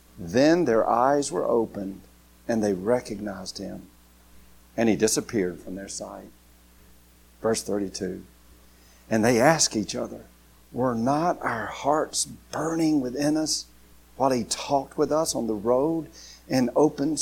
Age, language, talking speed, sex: 50-69, English, 135 wpm, male